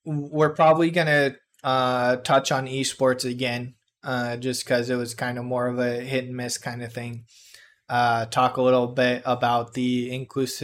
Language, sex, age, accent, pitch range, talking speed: English, male, 20-39, American, 120-135 Hz, 180 wpm